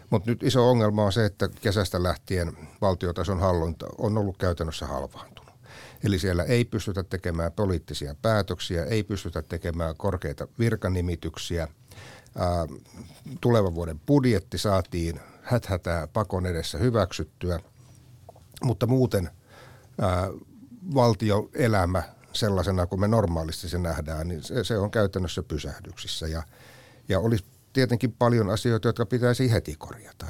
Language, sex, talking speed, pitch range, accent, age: Finnish, male, 115 wpm, 90-115 Hz, native, 60-79